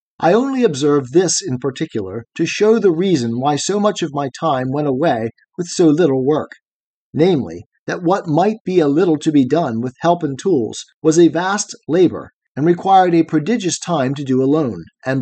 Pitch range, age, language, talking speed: 135-175 Hz, 40-59, English, 195 wpm